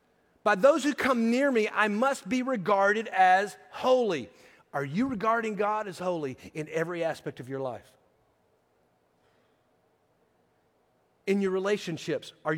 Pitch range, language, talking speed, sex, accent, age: 165-220 Hz, English, 135 wpm, male, American, 40-59